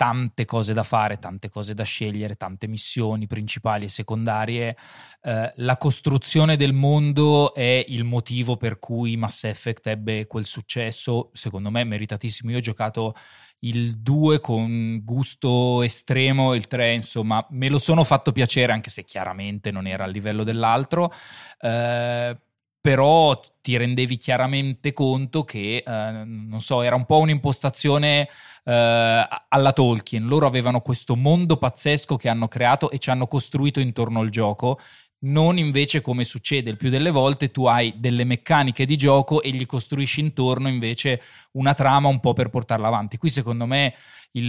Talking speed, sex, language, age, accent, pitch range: 155 wpm, male, Italian, 20-39, native, 115-135 Hz